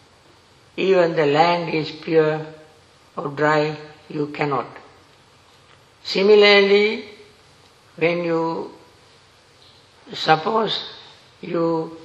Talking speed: 70 wpm